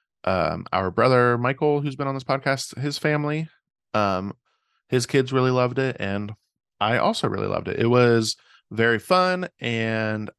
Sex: male